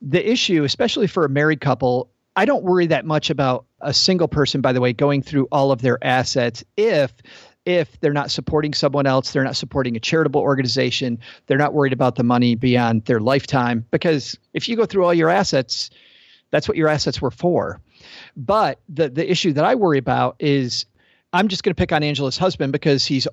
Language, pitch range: English, 125-155 Hz